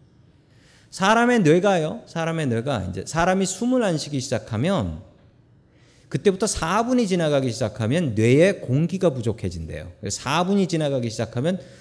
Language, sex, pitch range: Korean, male, 115-180 Hz